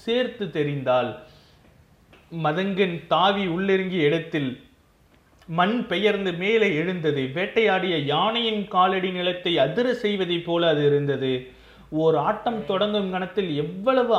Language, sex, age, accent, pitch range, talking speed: Tamil, male, 30-49, native, 155-210 Hz, 95 wpm